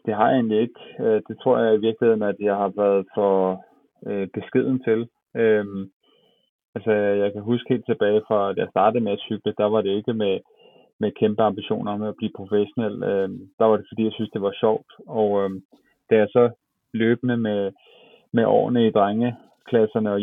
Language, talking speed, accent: Danish, 195 wpm, native